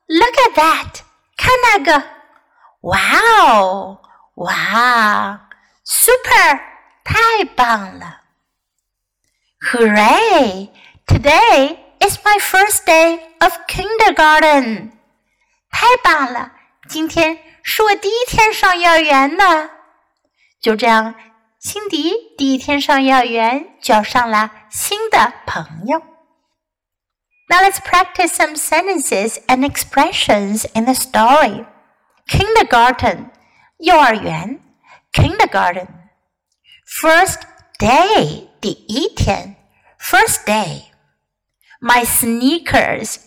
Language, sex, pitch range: Chinese, female, 240-370 Hz